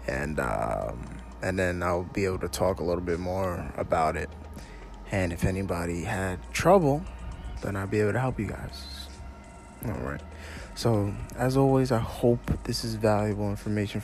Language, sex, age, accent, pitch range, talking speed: English, male, 20-39, American, 95-120 Hz, 165 wpm